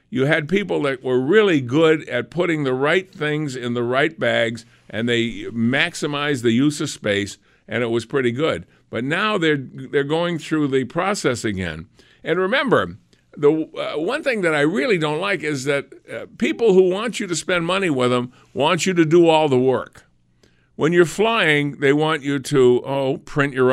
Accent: American